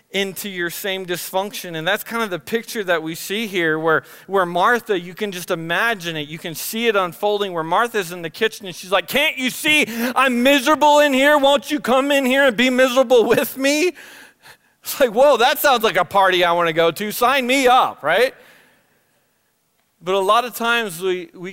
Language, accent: English, American